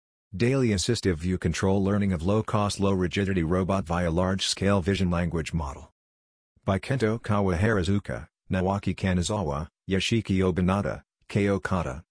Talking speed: 100 wpm